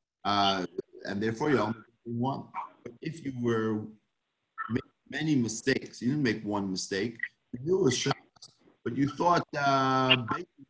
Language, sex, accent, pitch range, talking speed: English, male, American, 115-135 Hz, 150 wpm